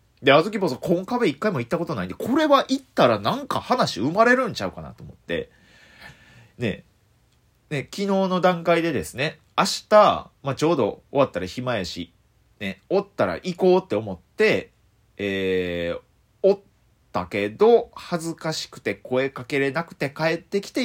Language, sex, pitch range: Japanese, male, 120-195 Hz